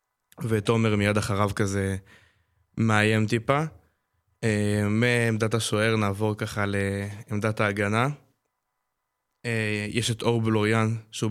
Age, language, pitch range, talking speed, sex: 20-39, Hebrew, 105-115 Hz, 100 wpm, male